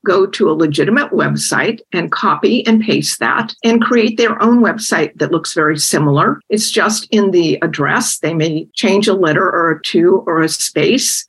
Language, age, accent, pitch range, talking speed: English, 50-69, American, 180-240 Hz, 185 wpm